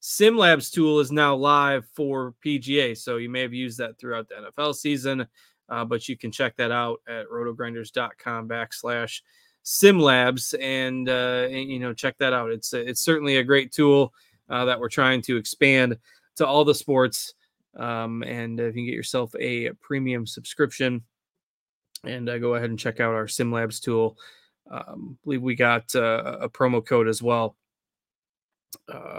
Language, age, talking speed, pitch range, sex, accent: English, 20-39, 170 wpm, 120-150 Hz, male, American